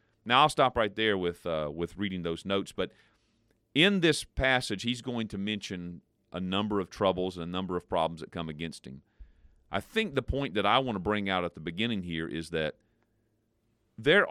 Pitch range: 95-130 Hz